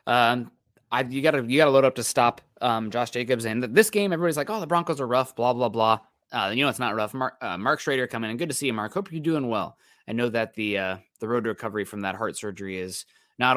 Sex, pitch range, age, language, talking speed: male, 110-130 Hz, 20-39, English, 275 wpm